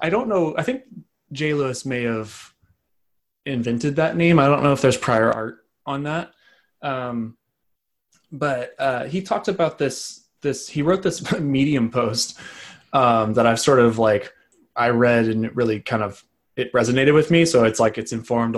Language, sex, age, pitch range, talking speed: English, male, 20-39, 115-145 Hz, 180 wpm